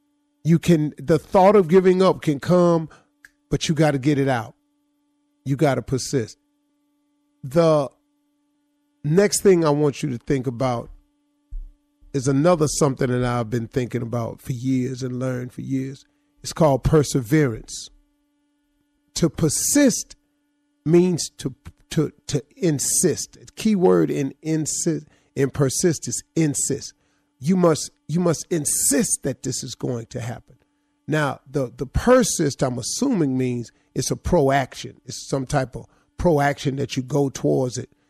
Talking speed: 150 wpm